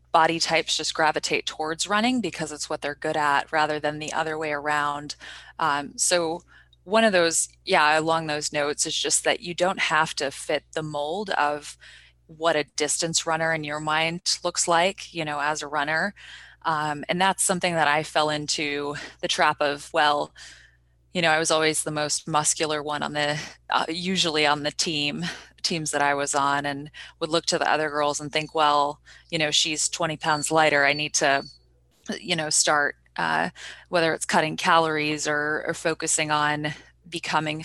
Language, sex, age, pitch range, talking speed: English, female, 20-39, 150-165 Hz, 185 wpm